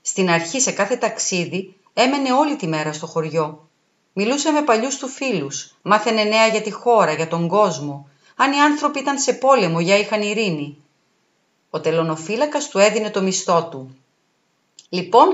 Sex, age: female, 40-59